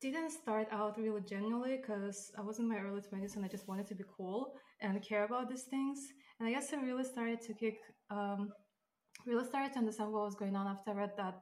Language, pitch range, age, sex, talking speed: English, 200-235 Hz, 20-39, female, 235 wpm